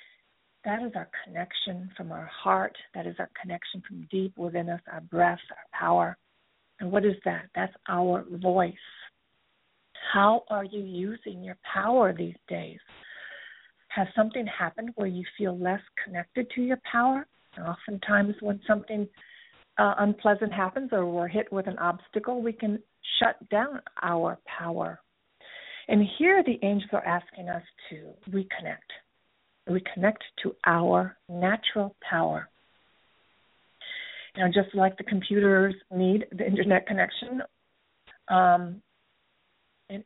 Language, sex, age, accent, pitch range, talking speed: English, female, 50-69, American, 180-220 Hz, 135 wpm